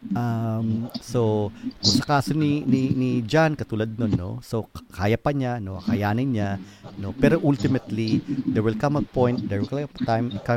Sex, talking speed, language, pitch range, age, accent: male, 165 wpm, Filipino, 100-130 Hz, 40-59, native